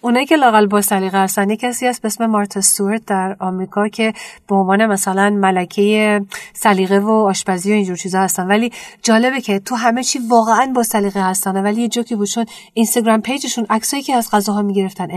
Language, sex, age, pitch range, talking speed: Persian, female, 40-59, 190-225 Hz, 175 wpm